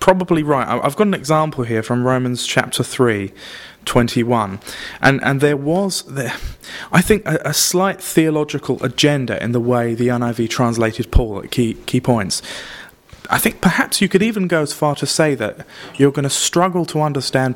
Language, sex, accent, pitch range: English, male, British, 115-145 Hz